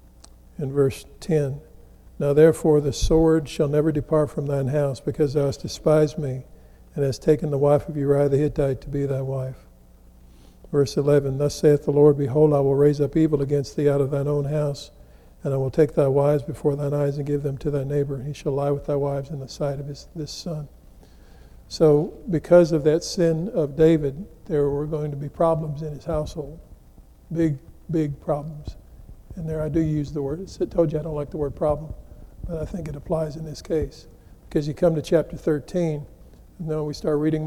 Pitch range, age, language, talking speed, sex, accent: 135-155 Hz, 50-69, English, 210 wpm, male, American